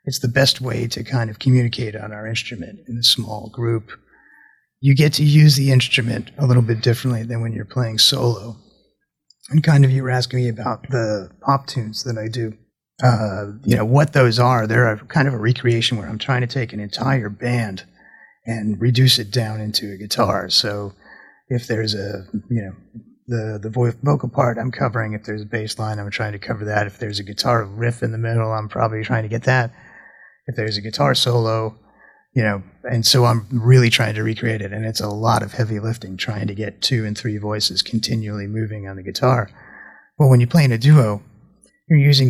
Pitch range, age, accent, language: 105-125 Hz, 30-49, American, English